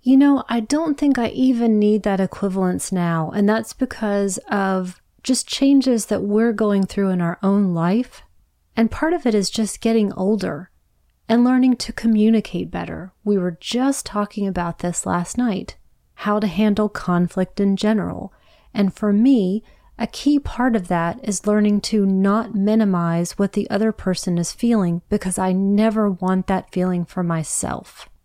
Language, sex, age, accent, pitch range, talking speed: English, female, 30-49, American, 185-230 Hz, 170 wpm